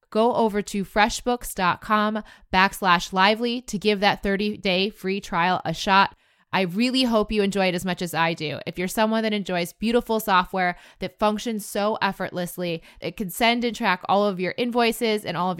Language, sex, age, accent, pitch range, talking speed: English, female, 20-39, American, 185-225 Hz, 185 wpm